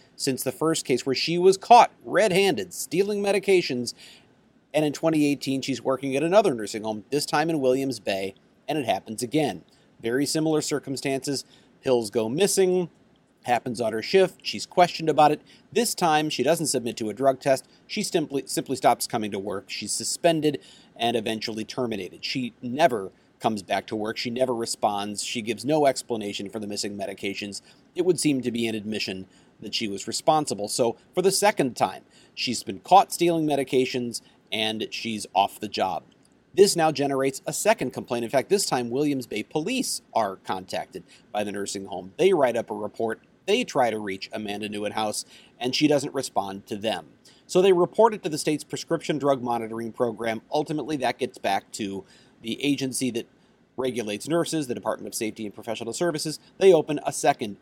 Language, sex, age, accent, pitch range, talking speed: English, male, 40-59, American, 110-155 Hz, 185 wpm